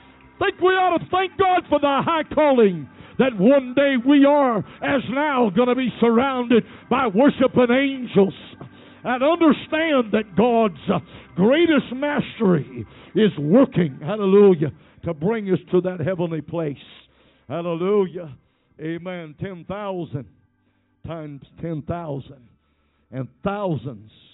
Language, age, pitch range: English, 60-79, 130-215 Hz